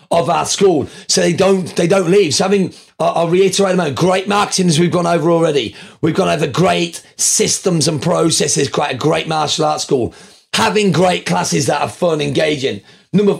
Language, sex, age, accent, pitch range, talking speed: English, male, 40-59, British, 165-200 Hz, 195 wpm